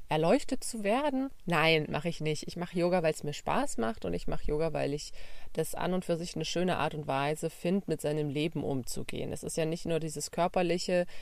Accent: German